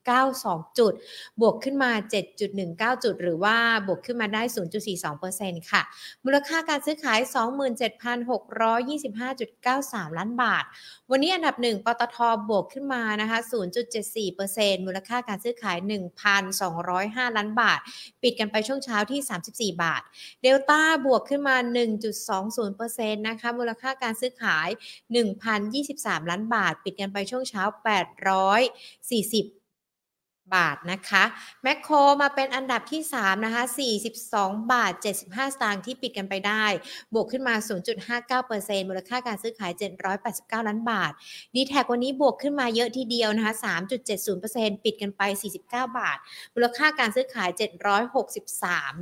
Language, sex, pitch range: Thai, female, 200-250 Hz